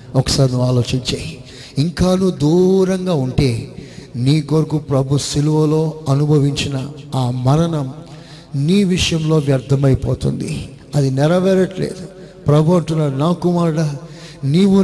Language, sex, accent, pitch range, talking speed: Telugu, male, native, 135-170 Hz, 95 wpm